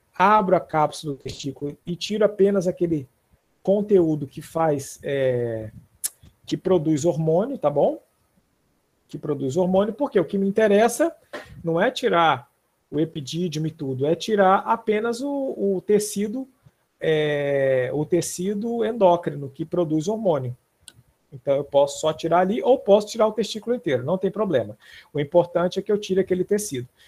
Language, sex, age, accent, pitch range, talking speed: Portuguese, male, 50-69, Brazilian, 155-210 Hz, 150 wpm